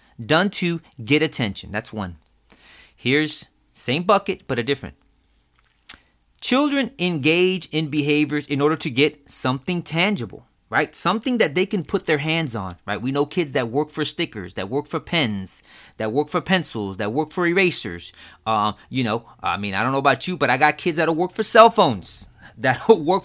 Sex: male